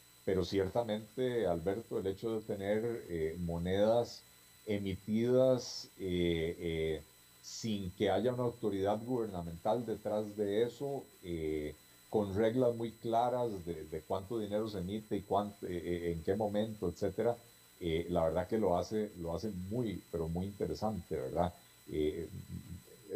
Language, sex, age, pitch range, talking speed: Spanish, male, 40-59, 85-115 Hz, 135 wpm